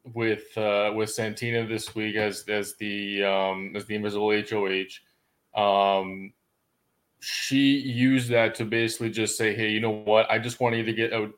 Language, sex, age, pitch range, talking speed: English, male, 20-39, 105-125 Hz, 180 wpm